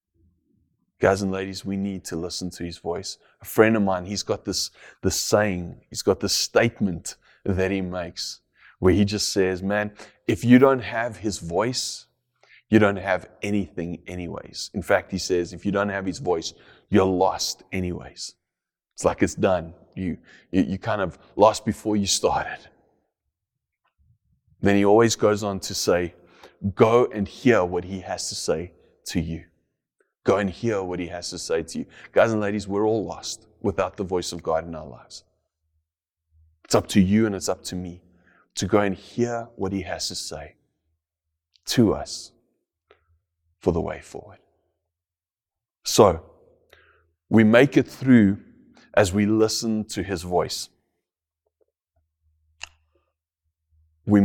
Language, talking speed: English, 160 wpm